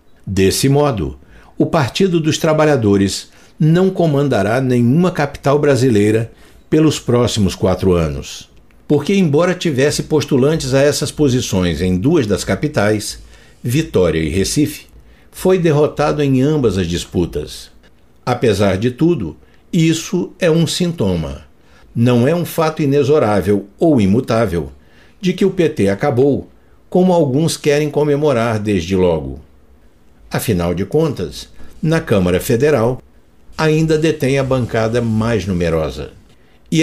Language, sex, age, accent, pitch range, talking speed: Portuguese, male, 60-79, Brazilian, 95-150 Hz, 120 wpm